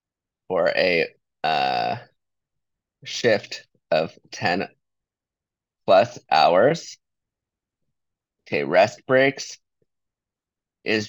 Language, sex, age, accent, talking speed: English, male, 20-39, American, 65 wpm